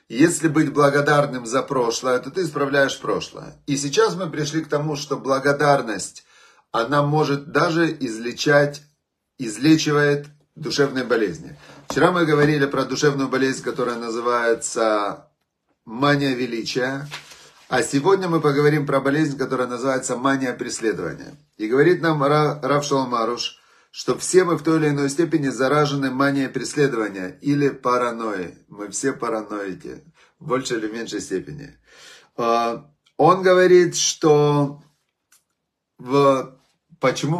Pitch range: 125-150 Hz